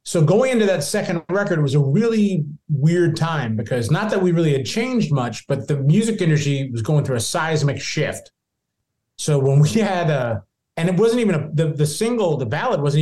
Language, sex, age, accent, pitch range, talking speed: English, male, 30-49, American, 135-175 Hz, 205 wpm